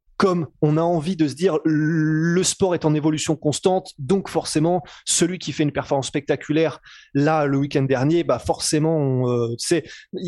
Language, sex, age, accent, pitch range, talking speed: French, male, 20-39, French, 140-175 Hz, 170 wpm